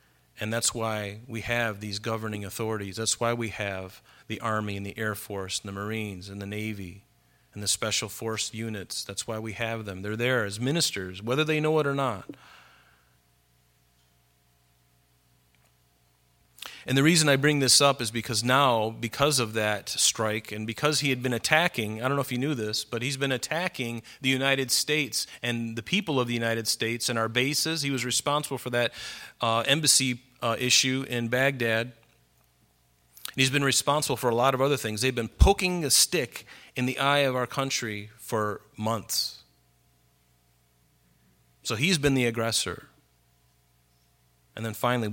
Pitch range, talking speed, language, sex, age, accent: 100-125 Hz, 170 wpm, English, male, 40-59, American